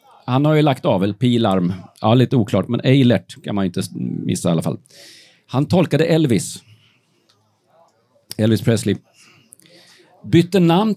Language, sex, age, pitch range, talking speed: Swedish, male, 40-59, 115-145 Hz, 150 wpm